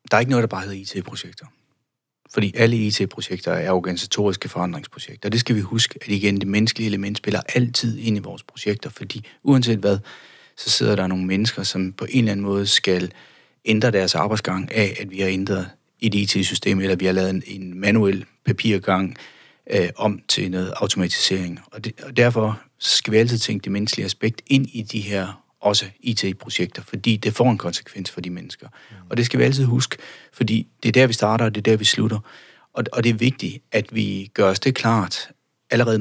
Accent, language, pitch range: native, Danish, 95-115 Hz